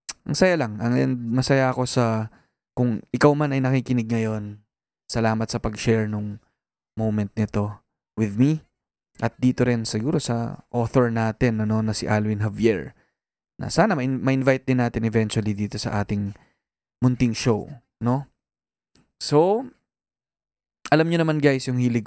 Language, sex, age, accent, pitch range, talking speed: Filipino, male, 20-39, native, 110-130 Hz, 140 wpm